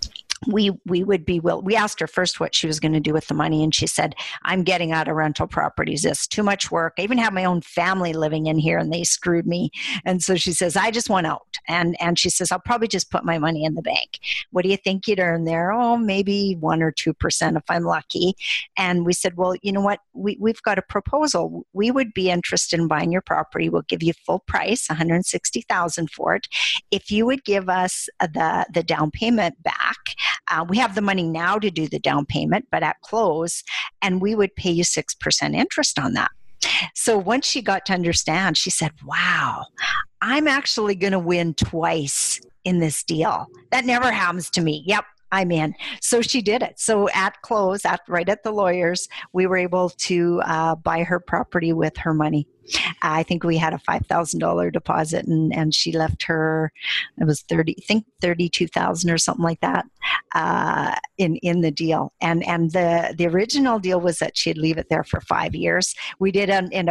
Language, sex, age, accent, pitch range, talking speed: English, female, 50-69, American, 165-200 Hz, 210 wpm